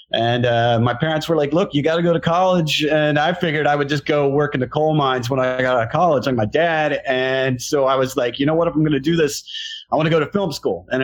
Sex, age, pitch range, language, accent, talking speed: male, 30-49, 125-155 Hz, English, American, 305 wpm